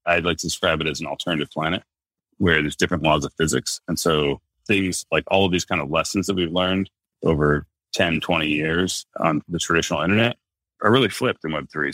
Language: English